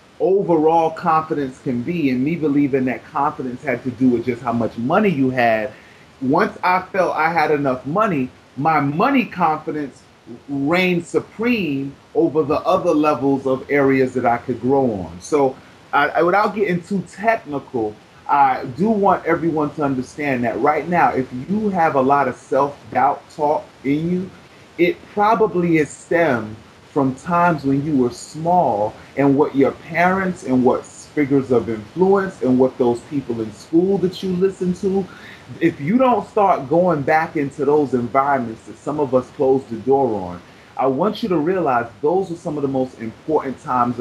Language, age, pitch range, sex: English, 30-49, 130-175 Hz, male